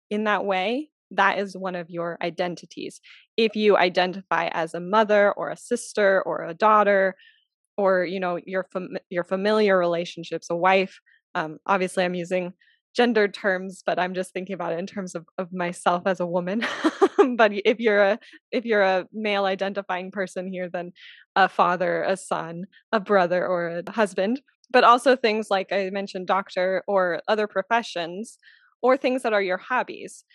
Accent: American